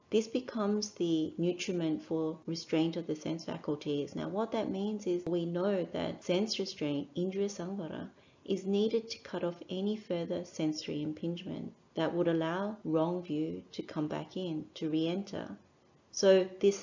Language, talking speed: English, 155 wpm